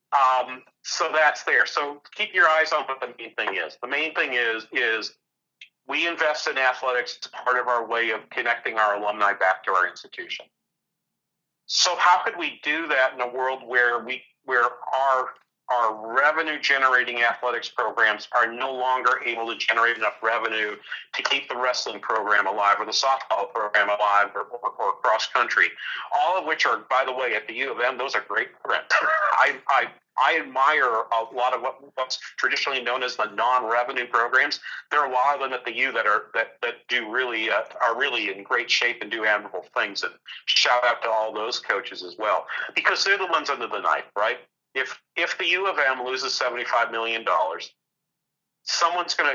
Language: English